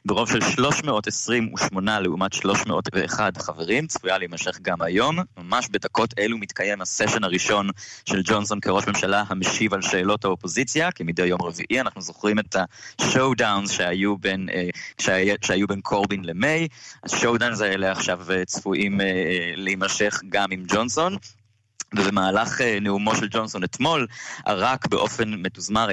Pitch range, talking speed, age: 95-120 Hz, 120 wpm, 20-39